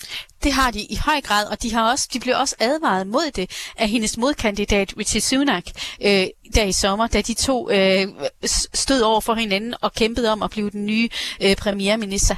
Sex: female